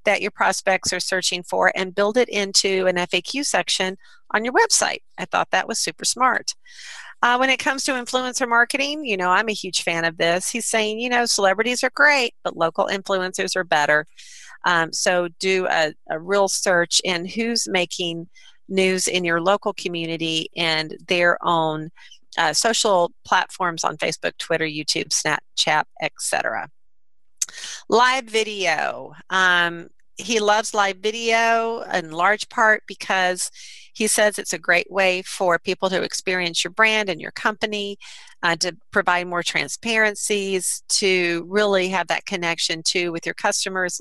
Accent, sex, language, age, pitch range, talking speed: American, female, English, 40-59, 175-220 Hz, 160 wpm